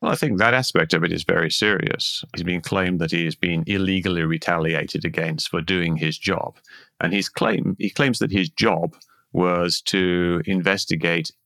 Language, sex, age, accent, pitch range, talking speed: English, male, 30-49, British, 80-90 Hz, 185 wpm